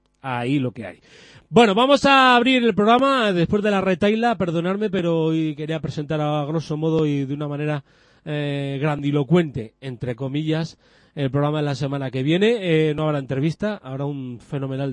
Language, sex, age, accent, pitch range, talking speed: Spanish, male, 30-49, Spanish, 145-185 Hz, 175 wpm